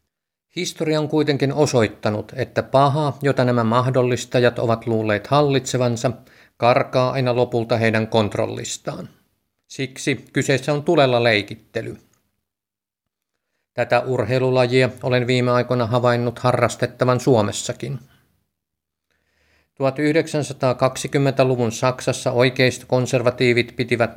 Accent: native